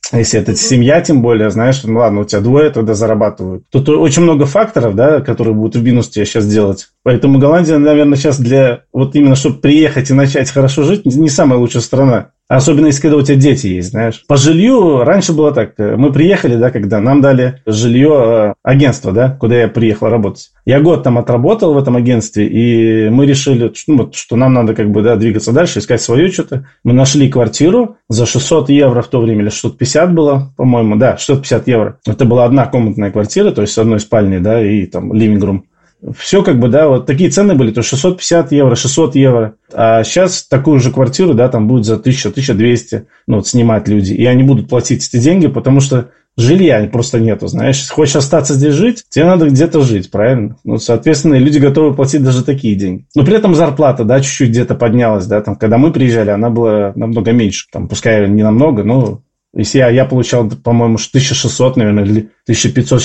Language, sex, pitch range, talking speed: Russian, male, 110-140 Hz, 195 wpm